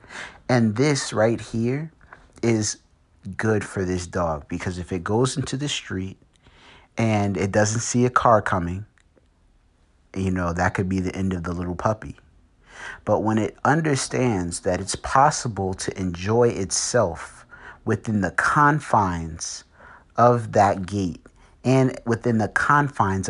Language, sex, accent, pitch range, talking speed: English, male, American, 90-120 Hz, 140 wpm